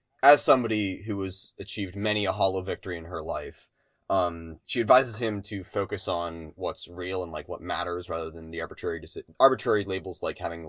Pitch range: 90-120 Hz